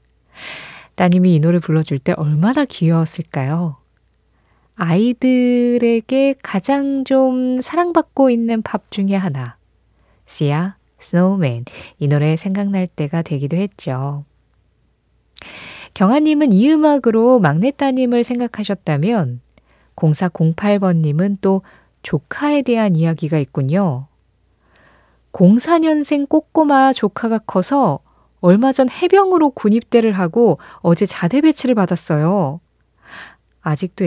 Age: 20-39